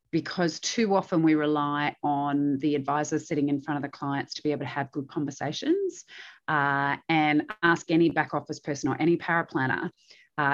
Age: 30-49